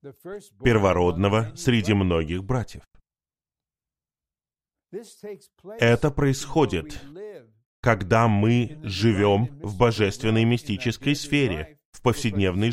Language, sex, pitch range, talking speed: Russian, male, 100-140 Hz, 75 wpm